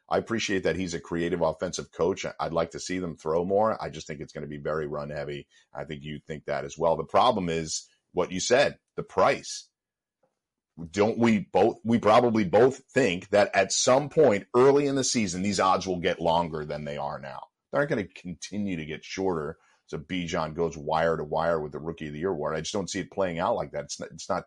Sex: male